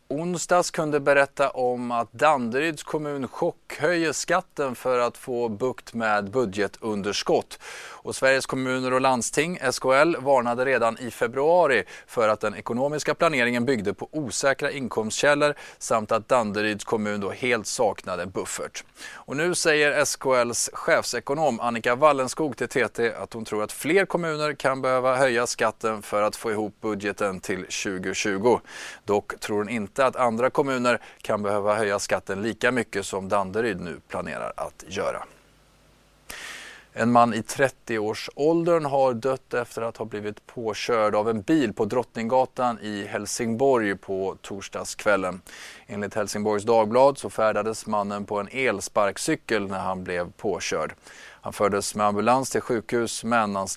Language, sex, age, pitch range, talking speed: Swedish, male, 30-49, 105-130 Hz, 145 wpm